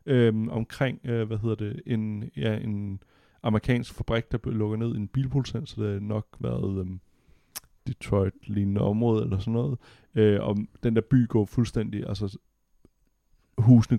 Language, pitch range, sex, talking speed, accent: Danish, 105-125 Hz, male, 150 wpm, native